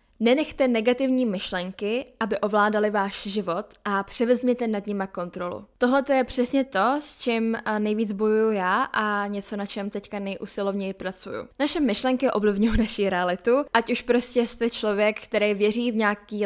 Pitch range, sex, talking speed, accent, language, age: 205-245 Hz, female, 155 wpm, native, Czech, 10-29